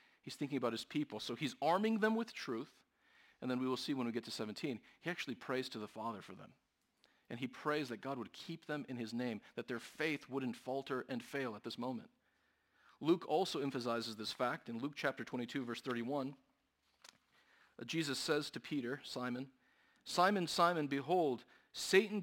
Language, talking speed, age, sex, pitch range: English, 190 wpm, 40-59, male, 115-155 Hz